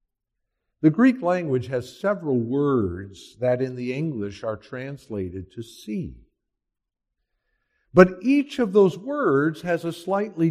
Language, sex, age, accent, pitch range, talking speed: English, male, 50-69, American, 120-180 Hz, 125 wpm